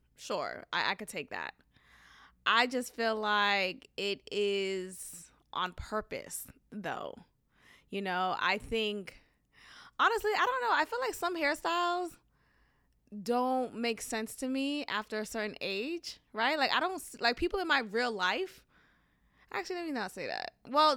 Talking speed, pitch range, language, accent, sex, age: 155 wpm, 200-255 Hz, English, American, female, 20-39